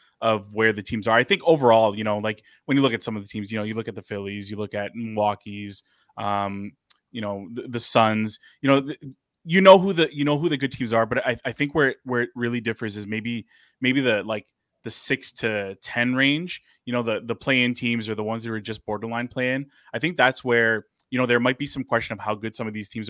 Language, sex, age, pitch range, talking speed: English, male, 20-39, 105-125 Hz, 260 wpm